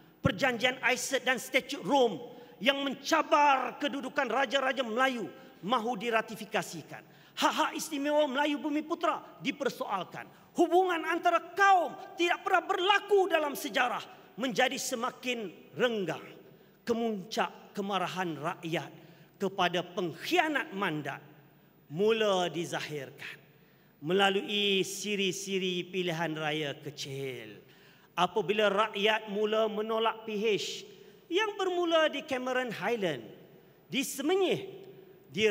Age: 40-59